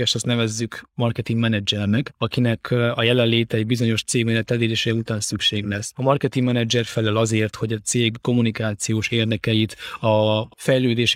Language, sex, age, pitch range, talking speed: Hungarian, male, 20-39, 110-125 Hz, 140 wpm